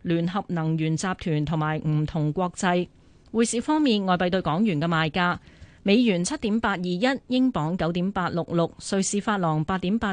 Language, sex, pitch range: Chinese, female, 165-220 Hz